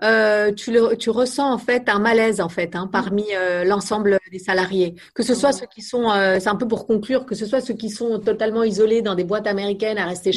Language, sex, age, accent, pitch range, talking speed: French, female, 30-49, French, 185-230 Hz, 250 wpm